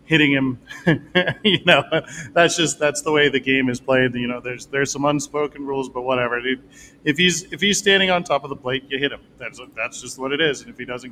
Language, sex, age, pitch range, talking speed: English, male, 40-59, 135-165 Hz, 255 wpm